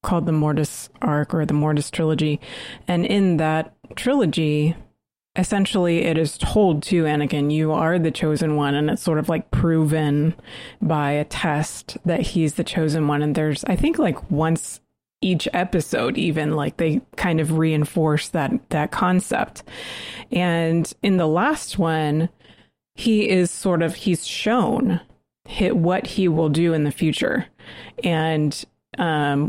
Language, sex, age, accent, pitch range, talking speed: English, female, 30-49, American, 155-185 Hz, 155 wpm